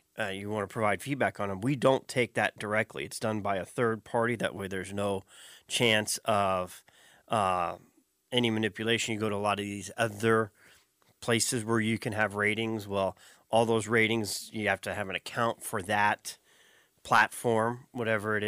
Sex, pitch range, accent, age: male, 100-115 Hz, American, 30-49